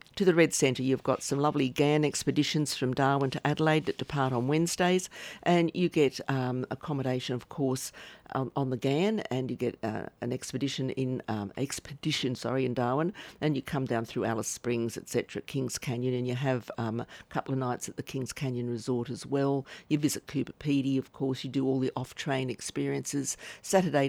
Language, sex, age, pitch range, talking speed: English, female, 50-69, 125-155 Hz, 195 wpm